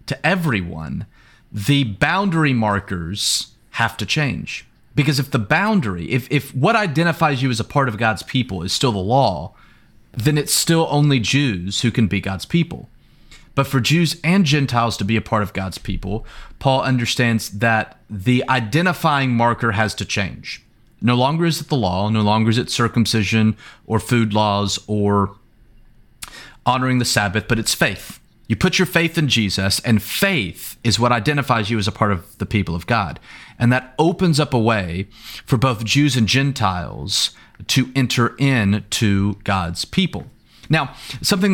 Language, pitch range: English, 105-145 Hz